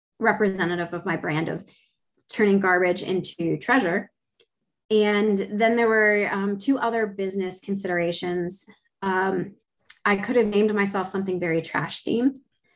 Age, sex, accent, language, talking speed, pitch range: 20-39, female, American, English, 130 wpm, 180-210 Hz